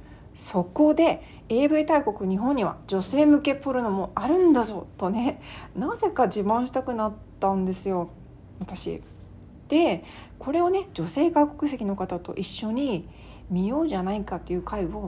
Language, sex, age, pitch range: Japanese, female, 40-59, 195-275 Hz